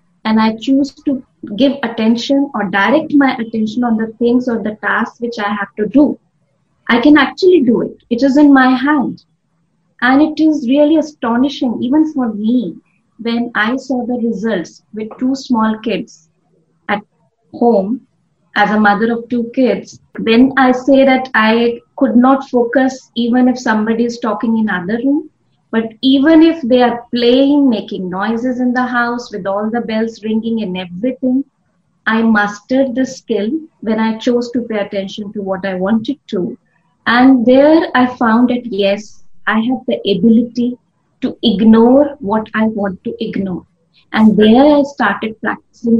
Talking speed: 165 wpm